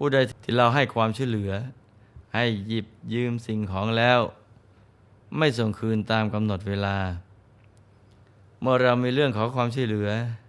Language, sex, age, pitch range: Thai, male, 20-39, 105-120 Hz